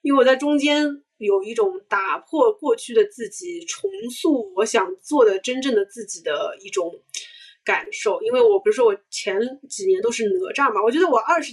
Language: Chinese